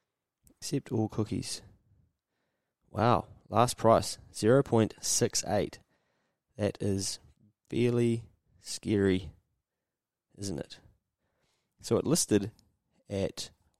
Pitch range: 95-115 Hz